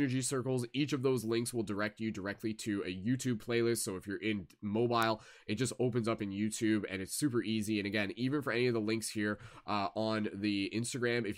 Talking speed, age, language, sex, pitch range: 225 wpm, 20-39, English, male, 105-125 Hz